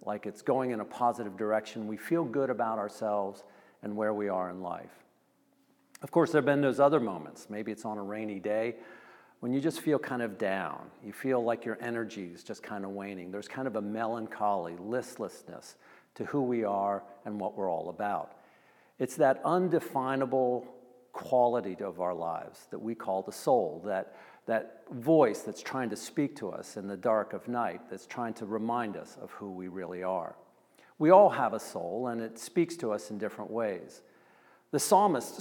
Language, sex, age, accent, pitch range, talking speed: English, male, 50-69, American, 105-130 Hz, 195 wpm